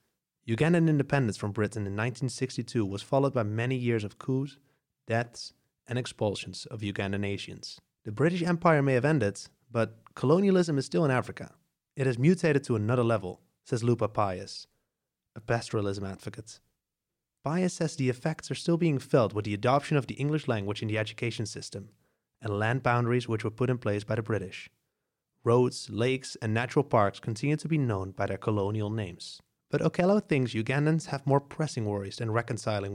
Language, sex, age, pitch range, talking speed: English, male, 30-49, 105-140 Hz, 175 wpm